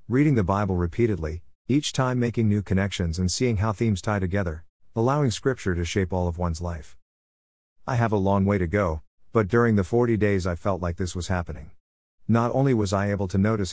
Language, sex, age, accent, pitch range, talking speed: English, male, 50-69, American, 85-115 Hz, 210 wpm